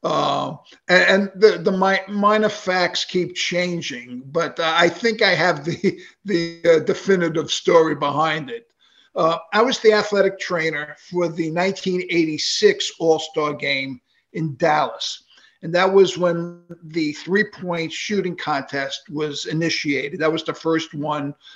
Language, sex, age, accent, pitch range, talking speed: English, male, 50-69, American, 155-180 Hz, 135 wpm